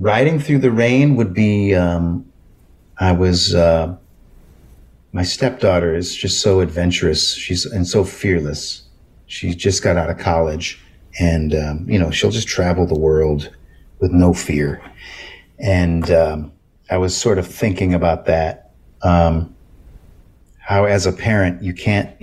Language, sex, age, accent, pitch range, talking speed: English, male, 40-59, American, 80-95 Hz, 145 wpm